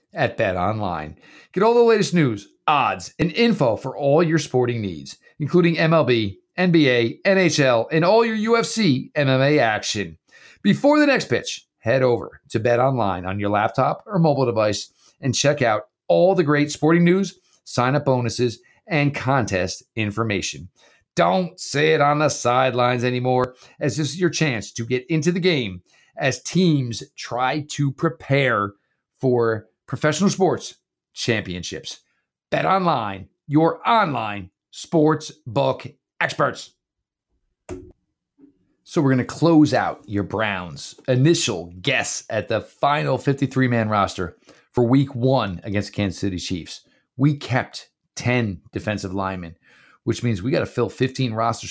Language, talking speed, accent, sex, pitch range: English, 145 wpm, American, male, 105-155 Hz